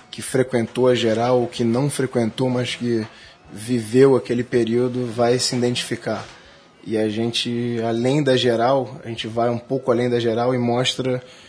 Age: 20-39